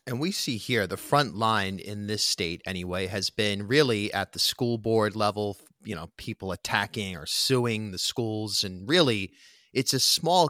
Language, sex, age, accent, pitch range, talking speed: English, male, 30-49, American, 100-130 Hz, 185 wpm